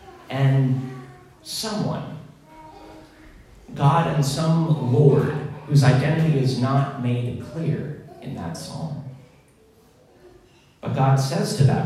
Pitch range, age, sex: 125-150 Hz, 40-59, male